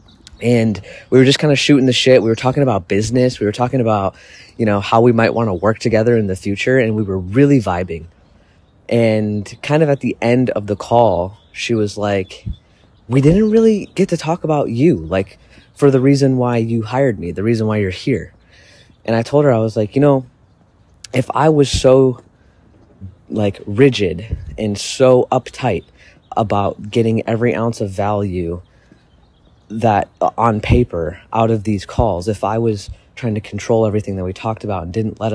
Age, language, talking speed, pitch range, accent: 20-39, English, 190 wpm, 100-125 Hz, American